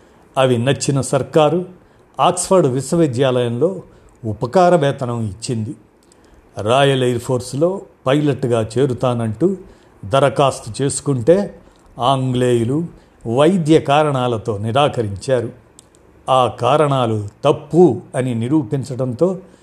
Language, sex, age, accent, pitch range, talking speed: Telugu, male, 50-69, native, 115-150 Hz, 75 wpm